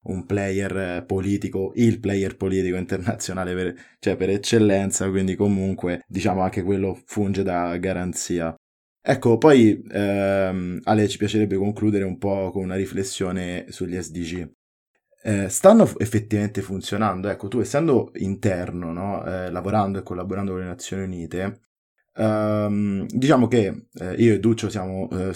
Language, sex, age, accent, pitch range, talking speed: Italian, male, 20-39, native, 95-110 Hz, 140 wpm